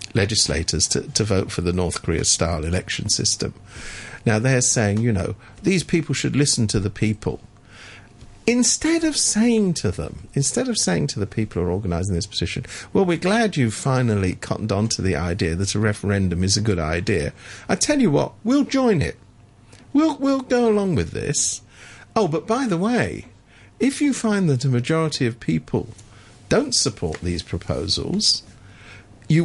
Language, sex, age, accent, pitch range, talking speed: English, male, 50-69, British, 100-155 Hz, 175 wpm